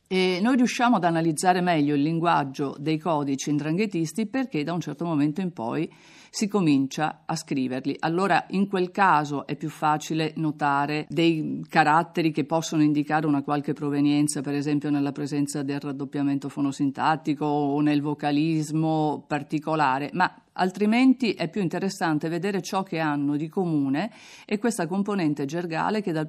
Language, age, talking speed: Italian, 50-69, 150 wpm